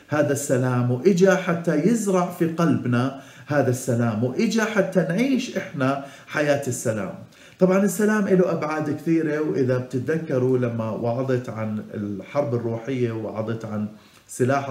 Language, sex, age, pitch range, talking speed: Arabic, male, 50-69, 125-175 Hz, 120 wpm